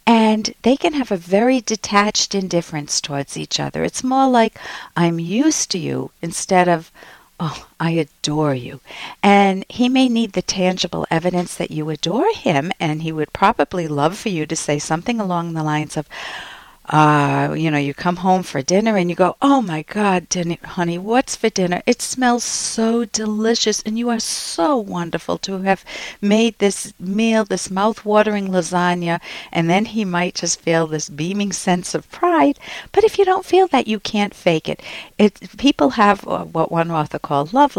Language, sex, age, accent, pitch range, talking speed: English, female, 60-79, American, 165-225 Hz, 180 wpm